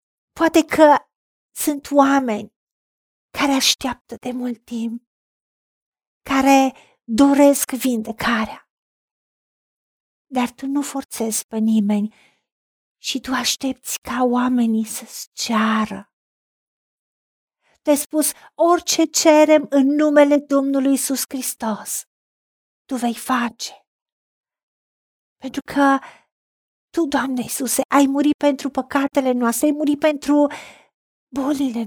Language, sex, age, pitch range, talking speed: Romanian, female, 40-59, 240-290 Hz, 95 wpm